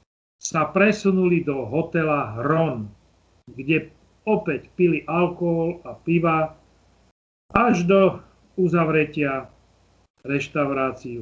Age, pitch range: 40-59, 115-180 Hz